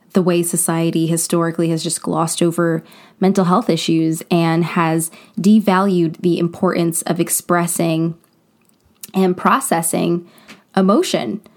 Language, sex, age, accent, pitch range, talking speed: English, female, 20-39, American, 175-210 Hz, 110 wpm